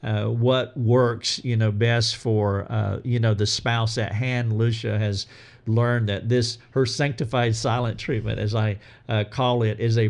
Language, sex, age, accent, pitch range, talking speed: English, male, 50-69, American, 110-125 Hz, 180 wpm